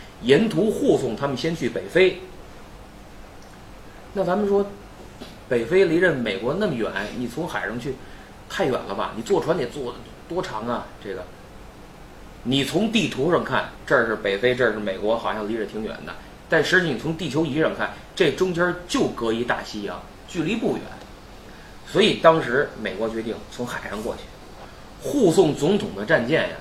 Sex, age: male, 30-49